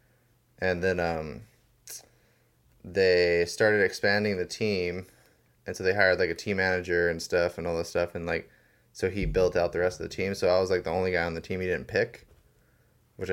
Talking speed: 210 wpm